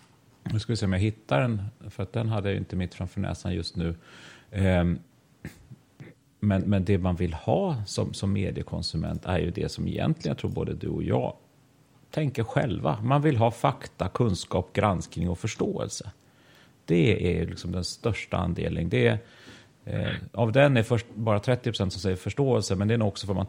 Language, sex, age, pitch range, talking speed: Swedish, male, 30-49, 95-120 Hz, 190 wpm